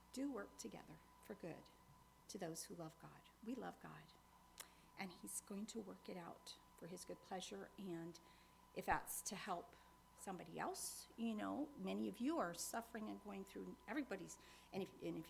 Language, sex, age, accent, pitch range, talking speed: English, female, 50-69, American, 190-250 Hz, 180 wpm